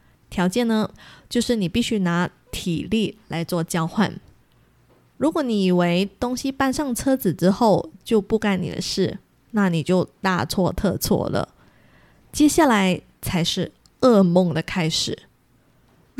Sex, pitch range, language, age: female, 180-230 Hz, Chinese, 20-39